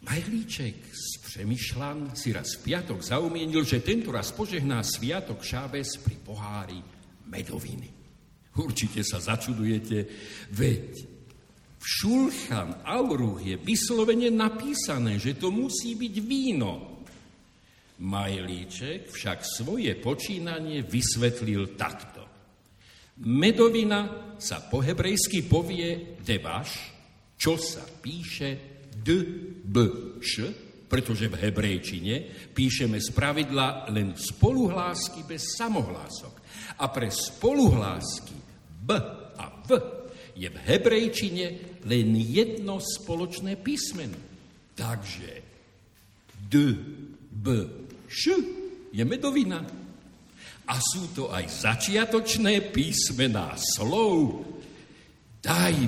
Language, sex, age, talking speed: Slovak, male, 60-79, 90 wpm